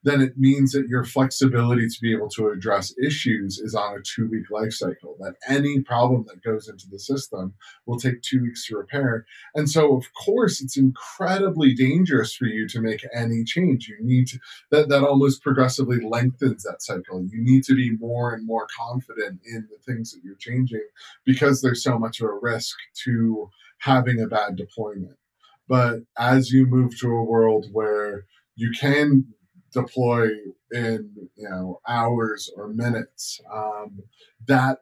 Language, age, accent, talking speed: English, 20-39, American, 170 wpm